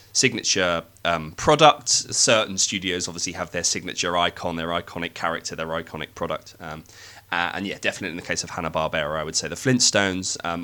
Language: English